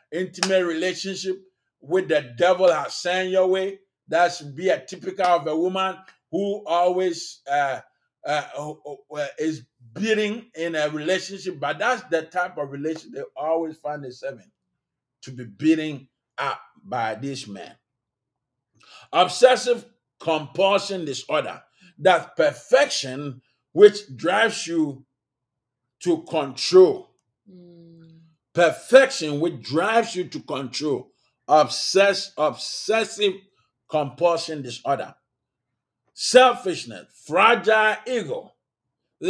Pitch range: 150-215 Hz